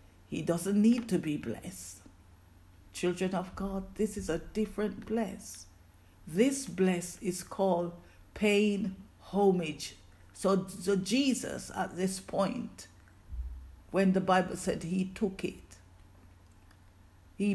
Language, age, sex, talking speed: English, 50-69, female, 115 wpm